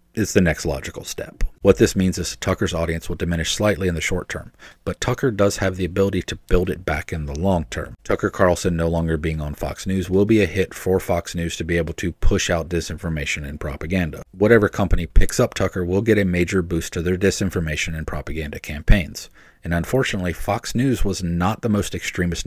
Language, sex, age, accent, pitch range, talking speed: English, male, 40-59, American, 80-95 Hz, 215 wpm